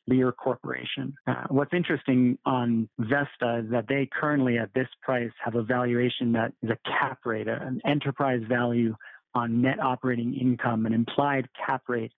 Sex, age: male, 40-59